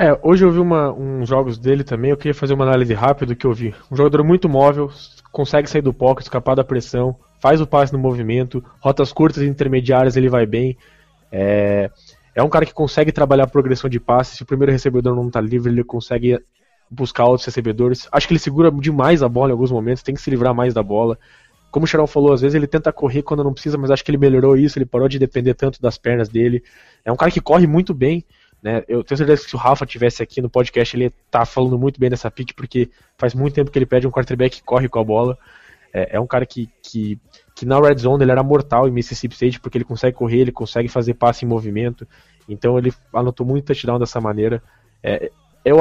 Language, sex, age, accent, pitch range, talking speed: Portuguese, male, 20-39, Brazilian, 120-140 Hz, 240 wpm